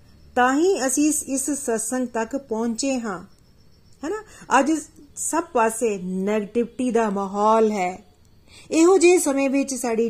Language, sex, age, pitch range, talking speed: Punjabi, female, 40-59, 205-270 Hz, 125 wpm